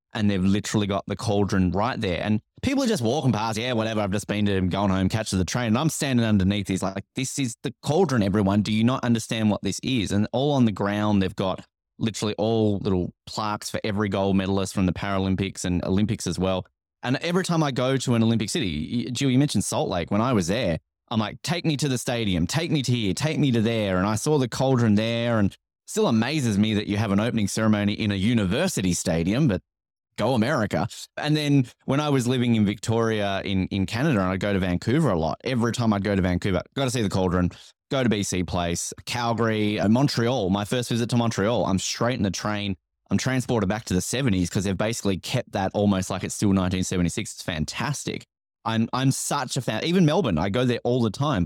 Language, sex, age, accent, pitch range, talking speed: English, male, 20-39, Australian, 95-120 Hz, 230 wpm